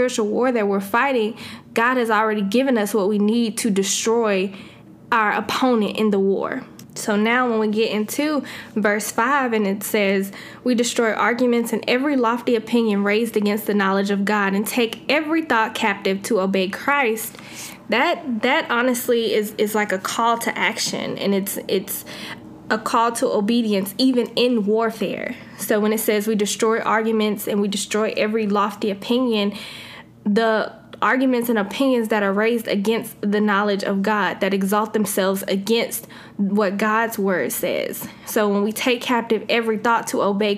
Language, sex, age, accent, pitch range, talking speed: English, female, 20-39, American, 210-240 Hz, 170 wpm